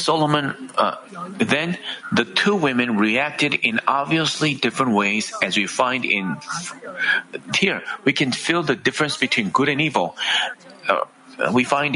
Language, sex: Korean, male